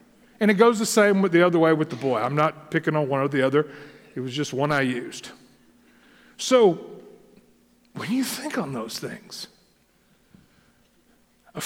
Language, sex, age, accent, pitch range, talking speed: English, male, 50-69, American, 170-230 Hz, 175 wpm